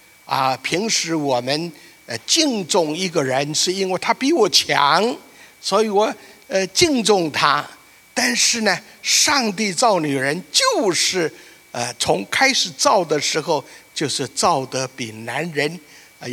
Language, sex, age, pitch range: Chinese, male, 60-79, 135-200 Hz